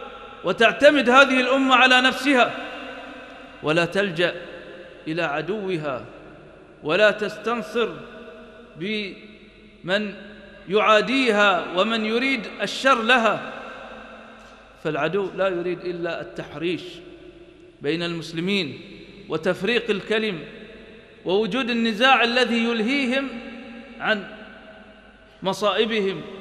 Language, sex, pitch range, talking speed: English, male, 180-245 Hz, 75 wpm